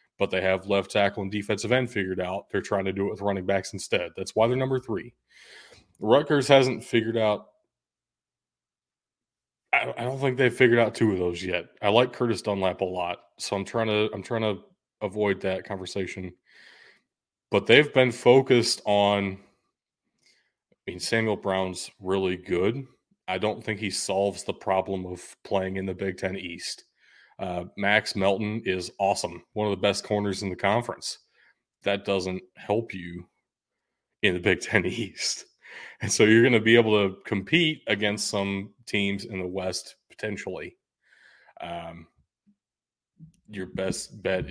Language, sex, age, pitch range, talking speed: English, male, 30-49, 95-110 Hz, 165 wpm